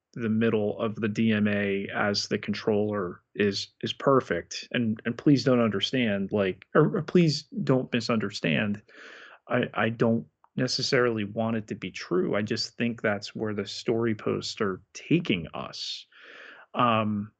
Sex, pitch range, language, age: male, 105-120 Hz, English, 30-49